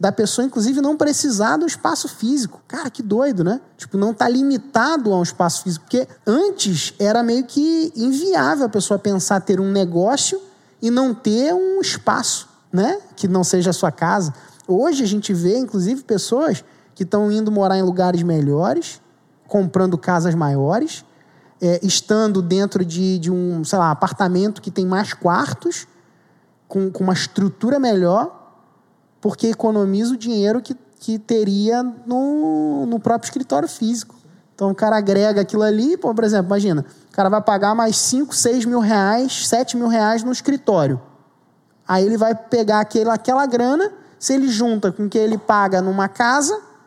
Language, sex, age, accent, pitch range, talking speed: Portuguese, male, 20-39, Brazilian, 185-245 Hz, 165 wpm